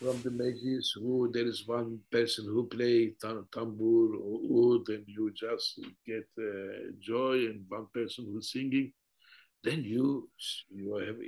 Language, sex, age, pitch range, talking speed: Arabic, male, 60-79, 105-170 Hz, 155 wpm